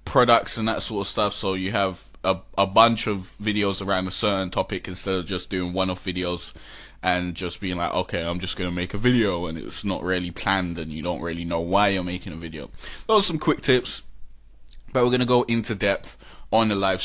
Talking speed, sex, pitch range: 225 wpm, male, 90-115 Hz